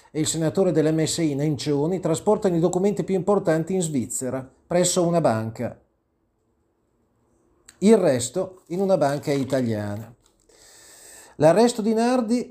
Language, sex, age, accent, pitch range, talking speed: Italian, male, 40-59, native, 135-190 Hz, 120 wpm